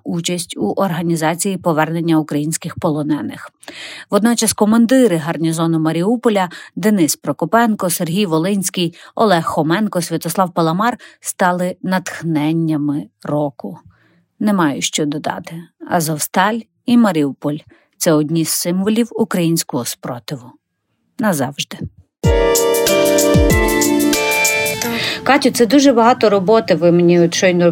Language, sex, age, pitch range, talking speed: Ukrainian, female, 30-49, 165-215 Hz, 95 wpm